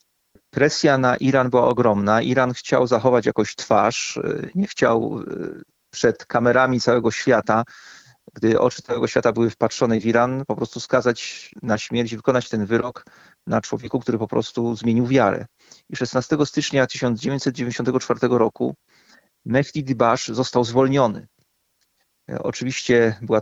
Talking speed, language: 130 wpm, Polish